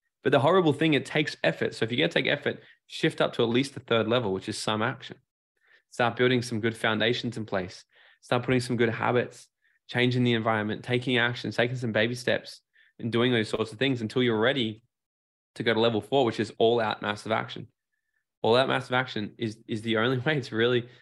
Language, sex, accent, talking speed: English, male, Australian, 225 wpm